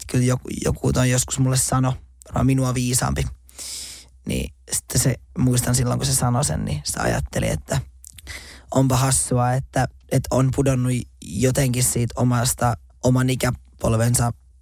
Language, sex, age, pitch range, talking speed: Finnish, male, 20-39, 85-130 Hz, 150 wpm